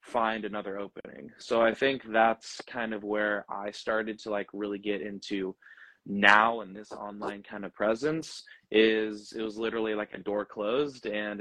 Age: 20-39